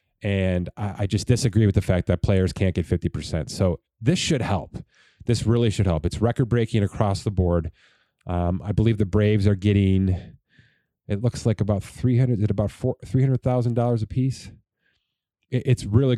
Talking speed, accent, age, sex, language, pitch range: 195 wpm, American, 30-49, male, English, 95-120 Hz